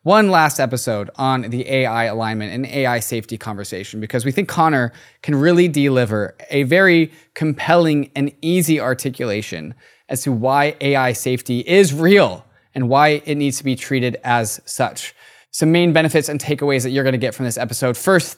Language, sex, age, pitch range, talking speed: English, male, 20-39, 125-160 Hz, 175 wpm